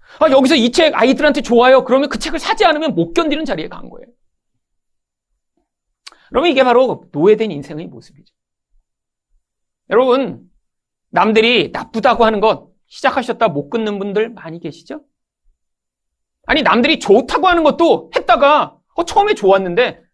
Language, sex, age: Korean, male, 40-59